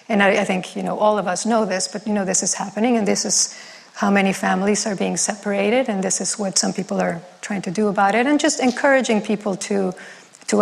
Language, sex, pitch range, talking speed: English, female, 195-225 Hz, 250 wpm